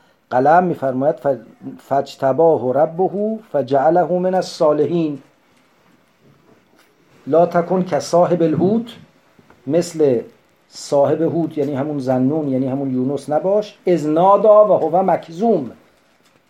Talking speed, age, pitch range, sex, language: 115 wpm, 50-69, 165-225 Hz, male, English